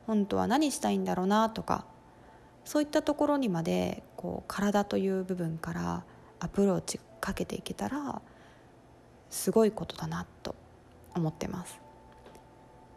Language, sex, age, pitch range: Japanese, female, 20-39, 130-195 Hz